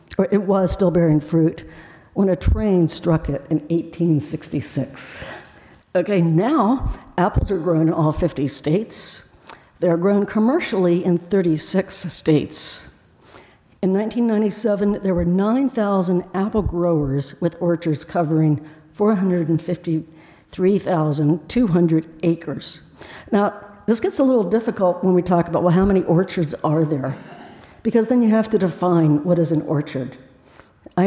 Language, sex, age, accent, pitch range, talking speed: English, female, 60-79, American, 160-200 Hz, 130 wpm